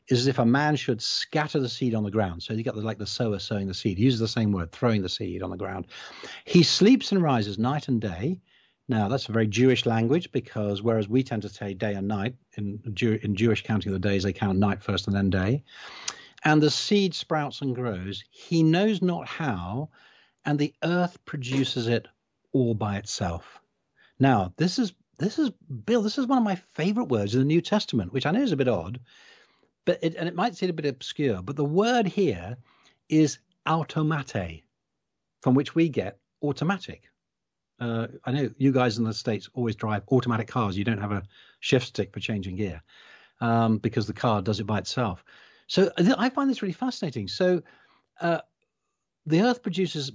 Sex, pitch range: male, 105-155 Hz